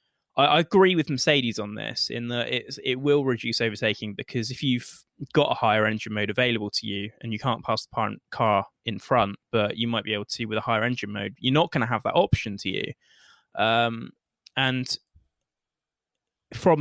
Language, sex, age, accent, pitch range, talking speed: English, male, 20-39, British, 110-135 Hz, 200 wpm